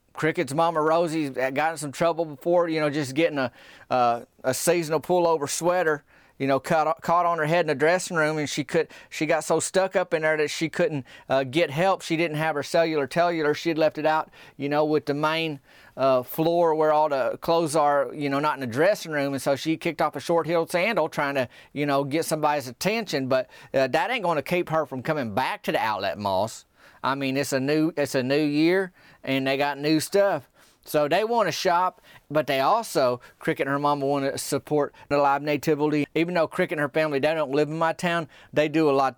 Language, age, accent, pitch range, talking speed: English, 30-49, American, 140-165 Hz, 235 wpm